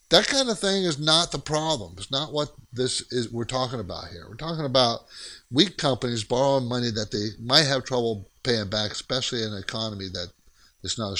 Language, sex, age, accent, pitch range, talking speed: English, male, 50-69, American, 110-150 Hz, 210 wpm